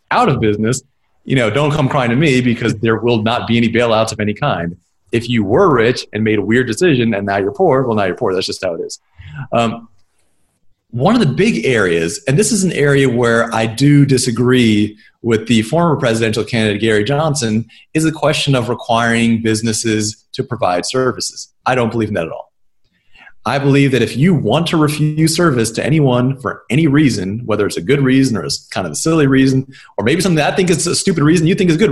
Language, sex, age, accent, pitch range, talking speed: English, male, 30-49, American, 115-170 Hz, 225 wpm